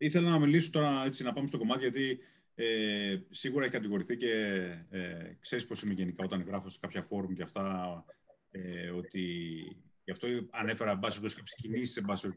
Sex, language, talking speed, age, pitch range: male, Greek, 175 wpm, 30-49, 105-155 Hz